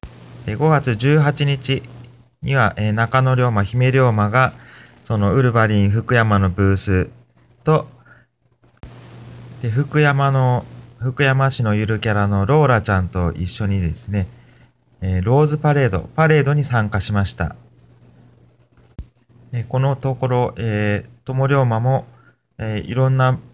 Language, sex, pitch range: Japanese, male, 95-125 Hz